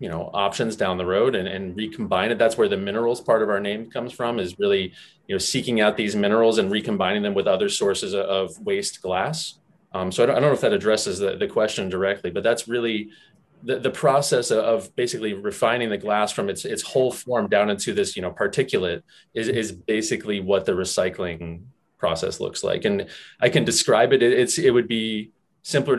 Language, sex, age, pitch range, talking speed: English, male, 20-39, 105-135 Hz, 210 wpm